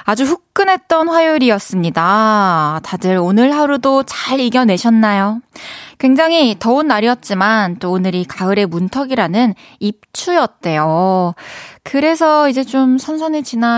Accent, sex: native, female